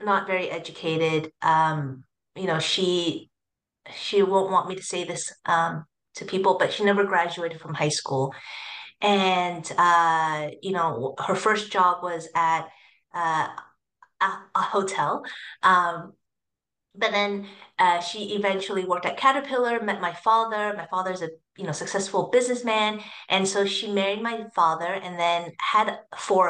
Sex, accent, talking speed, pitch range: female, American, 150 wpm, 175-225 Hz